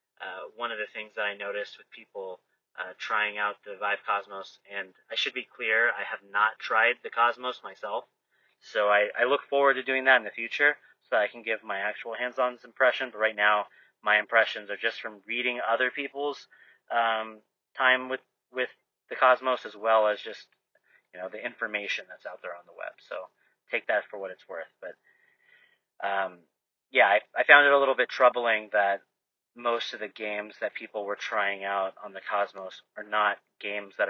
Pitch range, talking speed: 100-125 Hz, 200 wpm